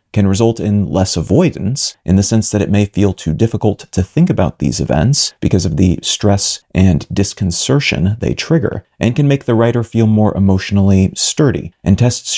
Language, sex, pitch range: English, male, 100-130 Hz